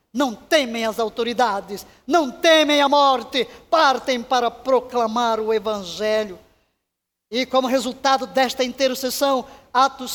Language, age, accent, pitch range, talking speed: Portuguese, 20-39, Brazilian, 240-310 Hz, 110 wpm